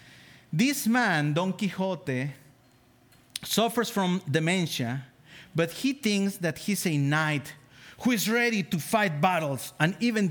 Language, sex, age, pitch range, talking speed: English, male, 40-59, 125-185 Hz, 130 wpm